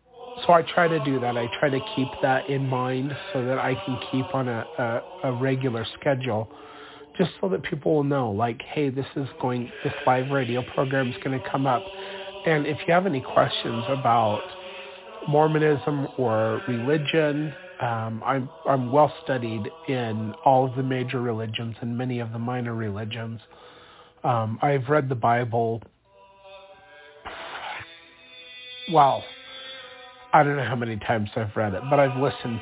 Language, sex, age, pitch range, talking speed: English, male, 30-49, 125-155 Hz, 165 wpm